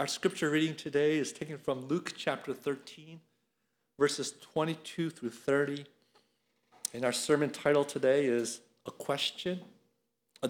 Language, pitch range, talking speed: English, 130-185 Hz, 130 wpm